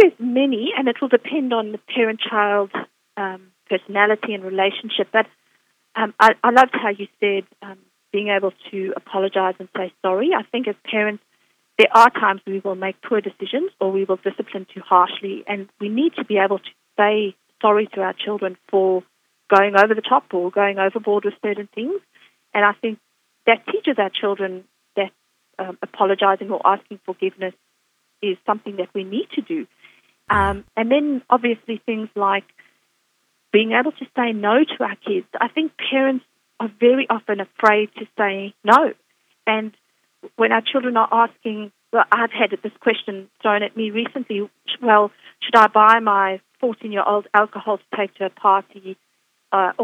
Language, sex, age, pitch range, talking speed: English, female, 40-59, 195-225 Hz, 170 wpm